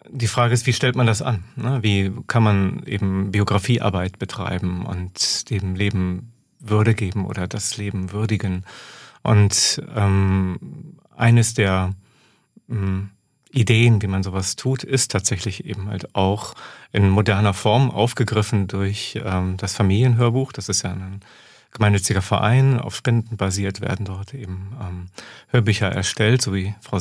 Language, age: German, 40-59